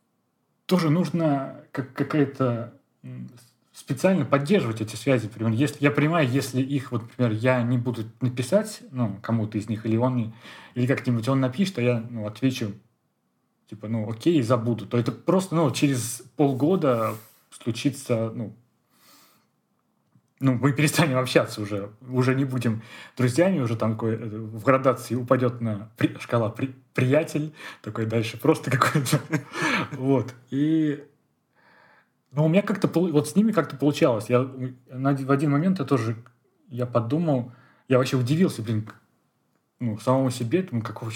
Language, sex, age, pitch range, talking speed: Russian, male, 20-39, 115-145 Hz, 135 wpm